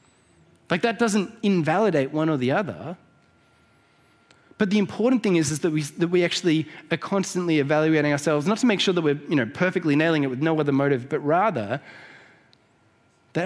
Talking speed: 170 wpm